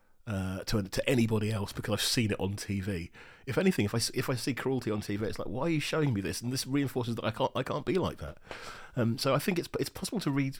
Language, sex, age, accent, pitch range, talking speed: English, male, 30-49, British, 105-130 Hz, 275 wpm